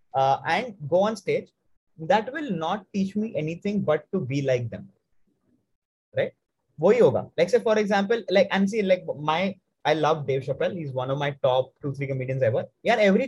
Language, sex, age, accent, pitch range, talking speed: Hindi, male, 20-39, native, 155-220 Hz, 200 wpm